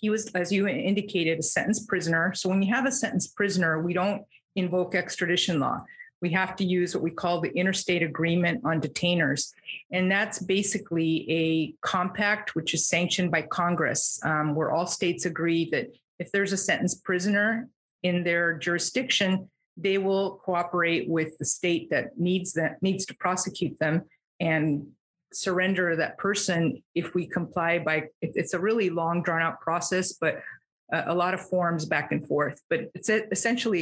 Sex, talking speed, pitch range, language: female, 170 wpm, 170-195 Hz, English